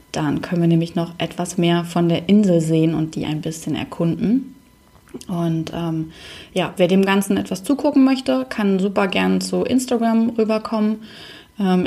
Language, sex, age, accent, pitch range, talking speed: German, female, 20-39, German, 170-210 Hz, 160 wpm